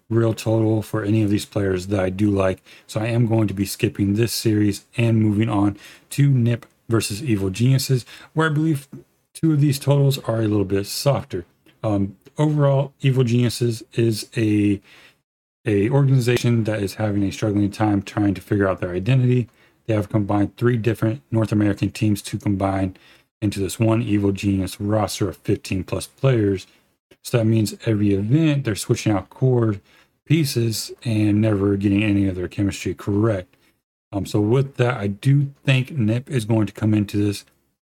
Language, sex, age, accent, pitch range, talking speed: English, male, 40-59, American, 100-120 Hz, 175 wpm